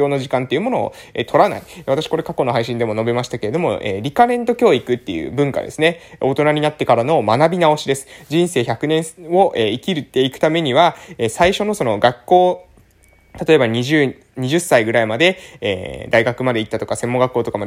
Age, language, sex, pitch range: 20-39, Japanese, male, 125-180 Hz